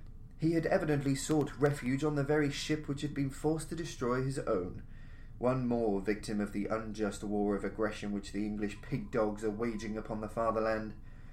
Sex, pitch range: male, 115-165 Hz